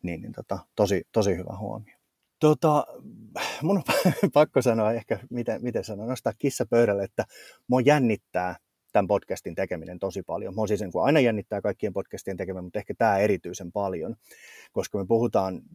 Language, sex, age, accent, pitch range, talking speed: Finnish, male, 30-49, native, 100-125 Hz, 170 wpm